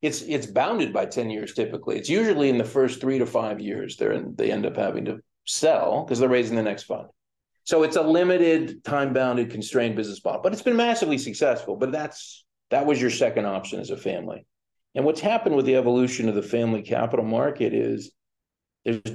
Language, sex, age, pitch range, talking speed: English, male, 40-59, 115-150 Hz, 210 wpm